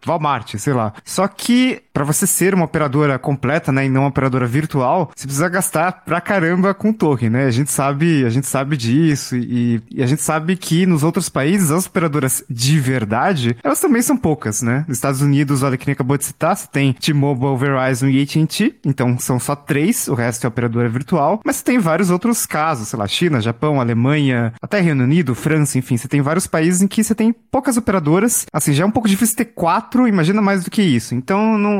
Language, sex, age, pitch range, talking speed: Portuguese, male, 20-39, 135-180 Hz, 215 wpm